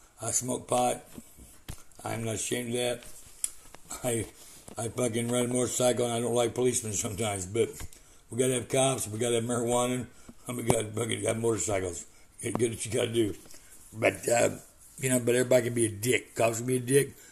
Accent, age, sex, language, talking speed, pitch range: American, 60-79, male, English, 190 wpm, 115-135 Hz